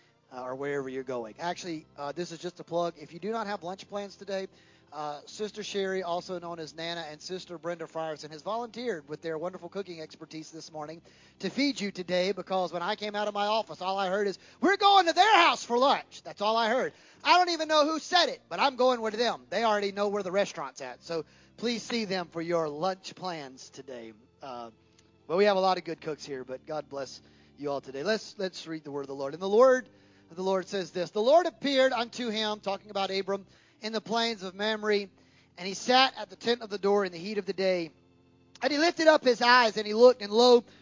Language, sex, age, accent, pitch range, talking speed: English, male, 30-49, American, 165-245 Hz, 245 wpm